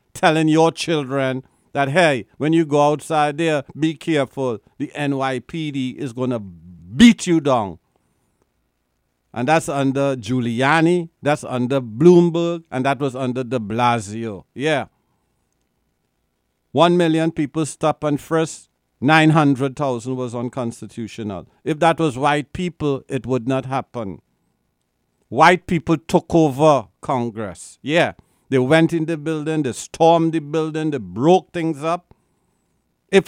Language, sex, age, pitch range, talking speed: English, male, 60-79, 120-160 Hz, 130 wpm